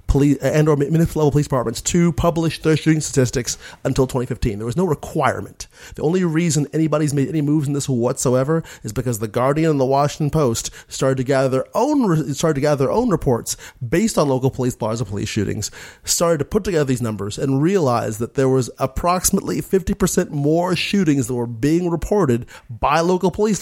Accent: American